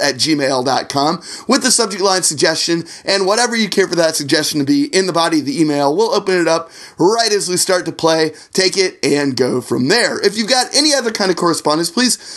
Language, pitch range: English, 140-185 Hz